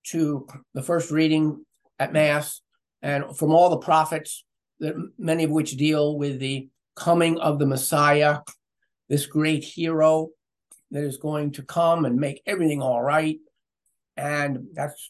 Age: 50-69